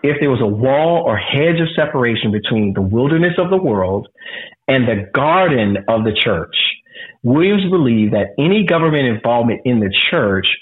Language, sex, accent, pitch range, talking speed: English, male, American, 115-160 Hz, 170 wpm